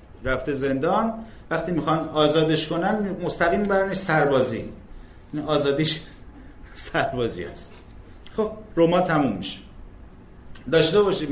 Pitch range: 105-155 Hz